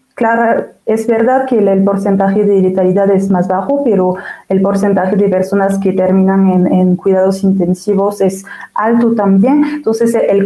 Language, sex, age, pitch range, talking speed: Spanish, female, 30-49, 195-235 Hz, 155 wpm